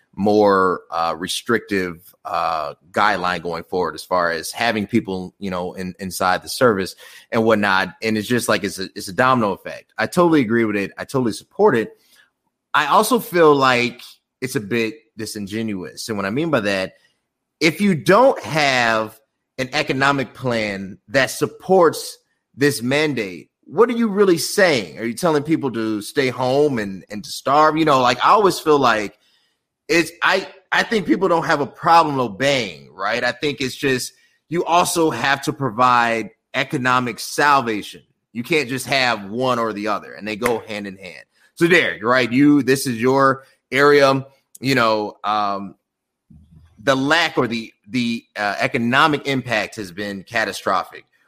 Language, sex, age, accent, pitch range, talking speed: English, male, 30-49, American, 105-145 Hz, 170 wpm